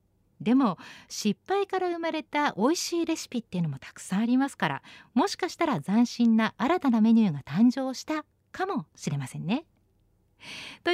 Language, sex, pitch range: Japanese, female, 185-290 Hz